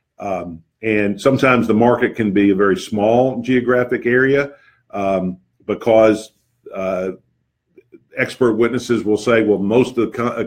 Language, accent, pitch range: English, American, 105-125 Hz